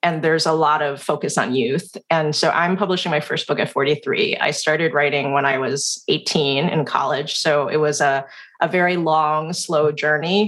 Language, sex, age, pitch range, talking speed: English, female, 30-49, 155-205 Hz, 200 wpm